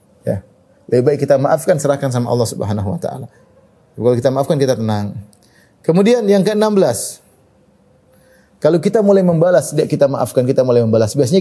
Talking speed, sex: 155 wpm, male